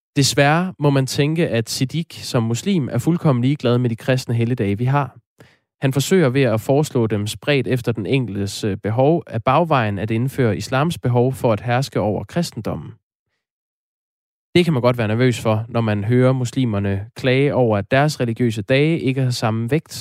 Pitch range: 110-140 Hz